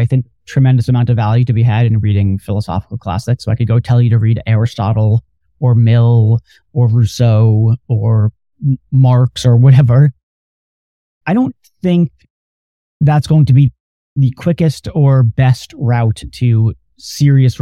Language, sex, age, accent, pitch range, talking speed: English, male, 40-59, American, 115-140 Hz, 150 wpm